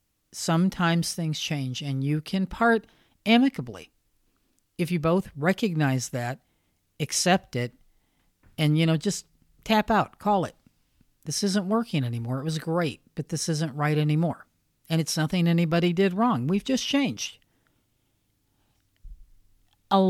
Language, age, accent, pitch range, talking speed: English, 50-69, American, 130-175 Hz, 135 wpm